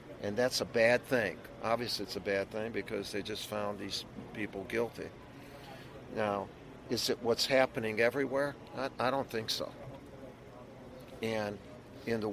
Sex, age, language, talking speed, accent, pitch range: male, 50-69, English, 150 wpm, American, 110-135 Hz